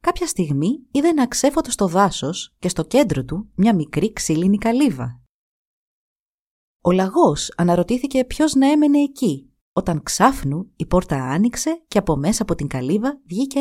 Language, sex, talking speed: Greek, female, 150 wpm